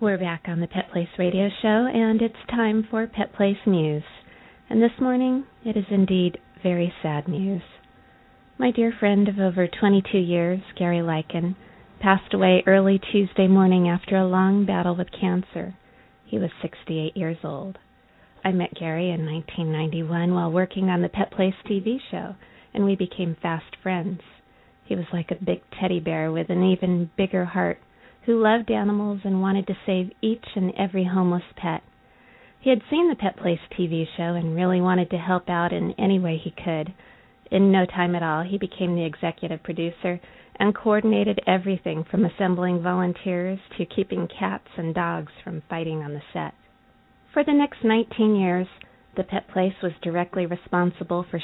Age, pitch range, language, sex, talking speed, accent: 30-49, 175-200 Hz, English, female, 175 wpm, American